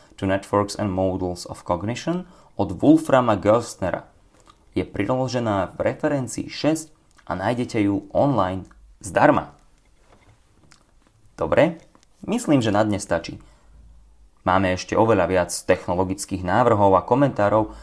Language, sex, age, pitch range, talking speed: Slovak, male, 30-49, 95-115 Hz, 110 wpm